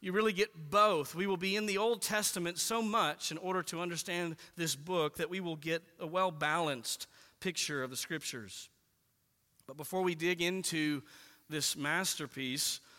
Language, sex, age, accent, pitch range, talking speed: English, male, 40-59, American, 160-205 Hz, 165 wpm